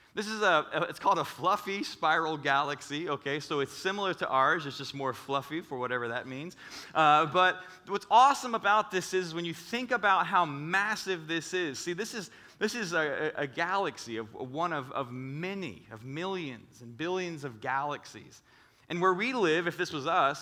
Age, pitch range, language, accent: 30-49, 140-195 Hz, English, American